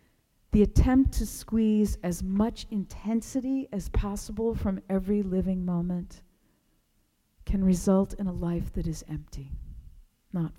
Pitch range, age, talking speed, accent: 170-215 Hz, 50-69, 125 wpm, American